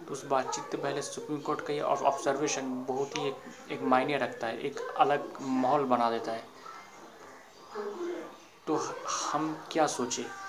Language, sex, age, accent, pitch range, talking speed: Hindi, male, 30-49, native, 135-155 Hz, 150 wpm